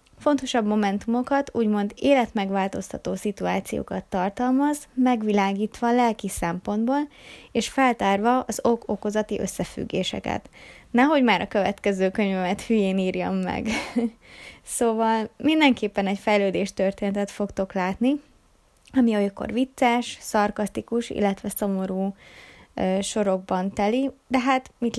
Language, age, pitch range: Hungarian, 20-39, 195-245 Hz